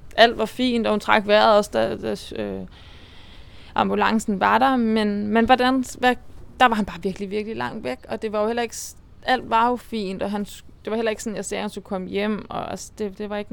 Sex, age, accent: female, 20-39, native